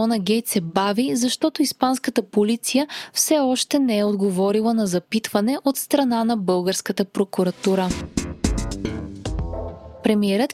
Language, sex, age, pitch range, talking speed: Bulgarian, female, 20-39, 200-255 Hz, 115 wpm